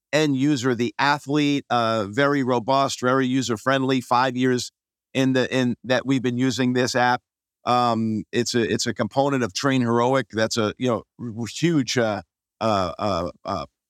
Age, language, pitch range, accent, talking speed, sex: 50-69, English, 130-165 Hz, American, 170 wpm, male